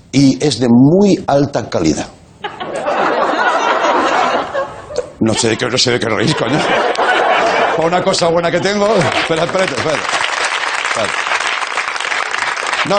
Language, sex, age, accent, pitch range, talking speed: Spanish, male, 60-79, Spanish, 100-160 Hz, 120 wpm